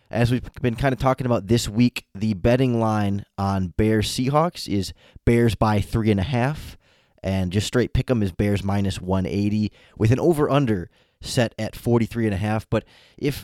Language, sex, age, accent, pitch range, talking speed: English, male, 20-39, American, 105-125 Hz, 160 wpm